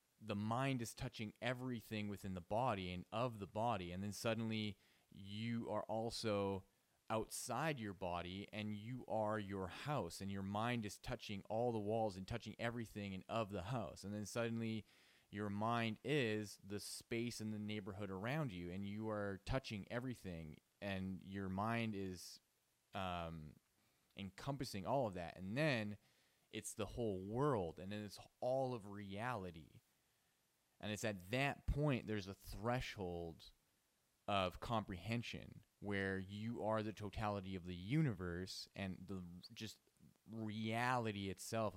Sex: male